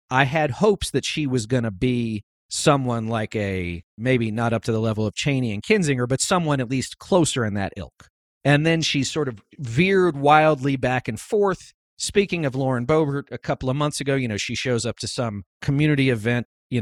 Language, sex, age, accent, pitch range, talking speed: English, male, 40-59, American, 110-145 Hz, 210 wpm